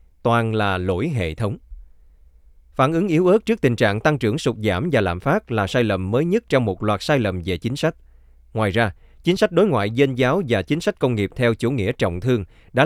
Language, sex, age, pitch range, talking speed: Vietnamese, male, 20-39, 95-140 Hz, 240 wpm